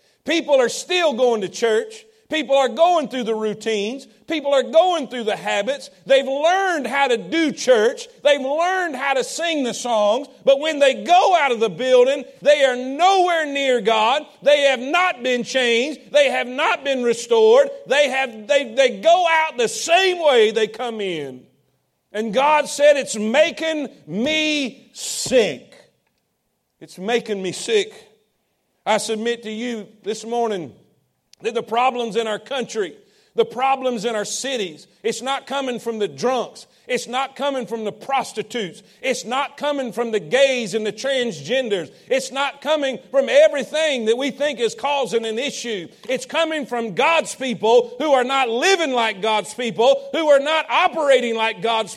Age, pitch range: 50-69, 230-295 Hz